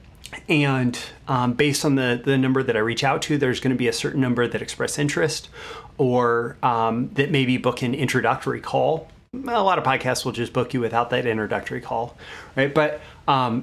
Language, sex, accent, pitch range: English, male, American, 120-140 Hz